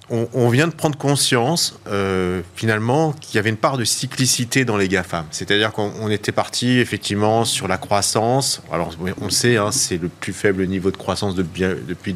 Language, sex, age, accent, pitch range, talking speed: French, male, 30-49, French, 100-125 Hz, 195 wpm